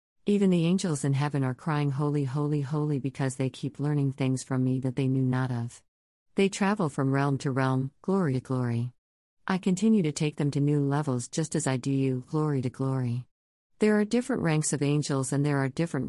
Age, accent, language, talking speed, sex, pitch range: 50-69, American, English, 215 wpm, female, 130-160 Hz